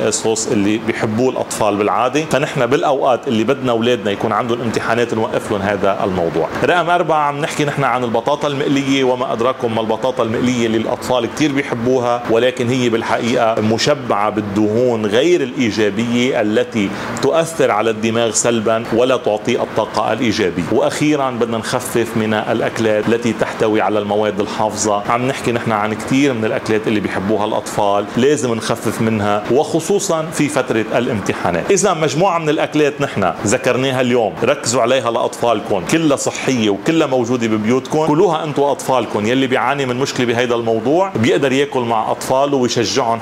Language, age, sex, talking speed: Arabic, 30-49, male, 145 wpm